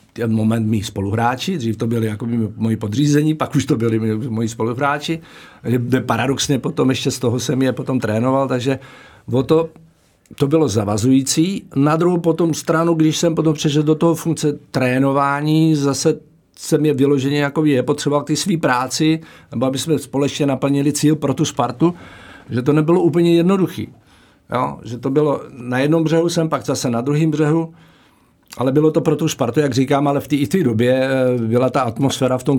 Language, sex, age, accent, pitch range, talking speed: Czech, male, 50-69, native, 115-145 Hz, 180 wpm